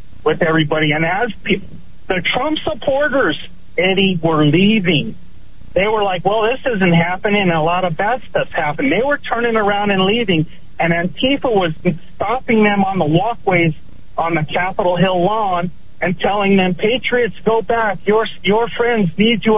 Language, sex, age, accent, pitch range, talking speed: English, male, 40-59, American, 165-220 Hz, 165 wpm